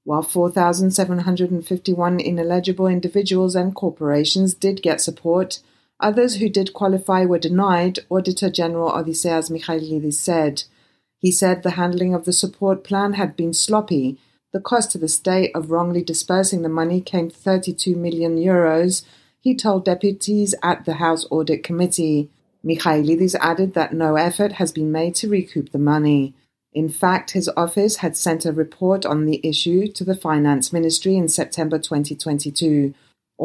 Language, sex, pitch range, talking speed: English, female, 160-190 Hz, 150 wpm